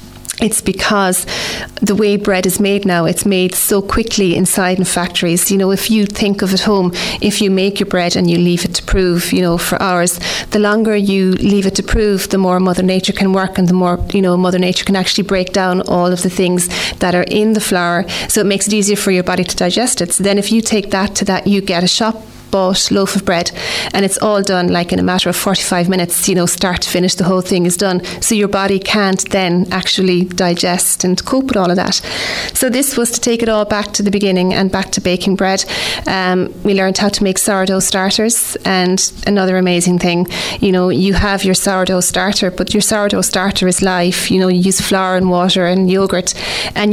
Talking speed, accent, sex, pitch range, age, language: 235 wpm, Irish, female, 180-200 Hz, 30-49, English